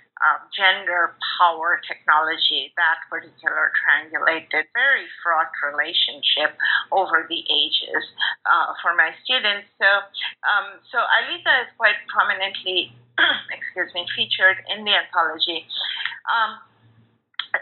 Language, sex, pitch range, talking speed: English, female, 185-255 Hz, 110 wpm